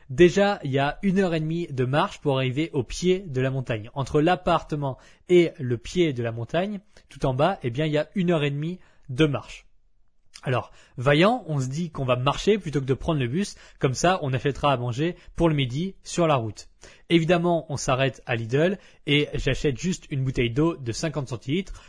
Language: French